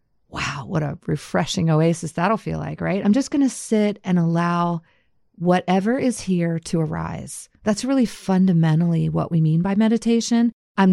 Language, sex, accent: English, female, American